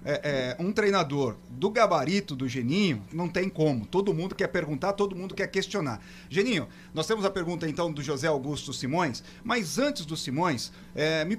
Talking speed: 170 wpm